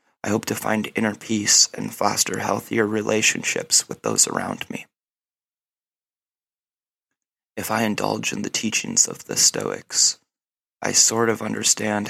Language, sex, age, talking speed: English, male, 30-49, 135 wpm